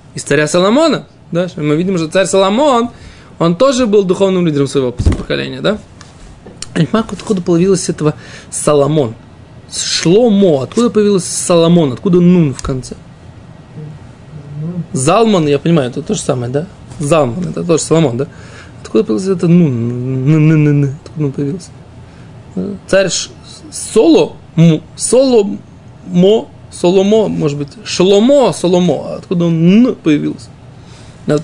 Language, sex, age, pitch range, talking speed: Russian, male, 20-39, 140-190 Hz, 125 wpm